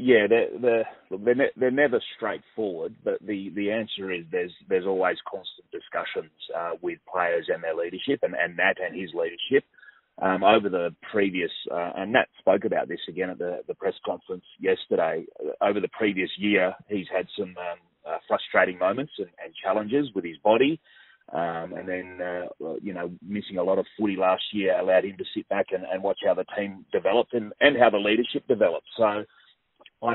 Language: English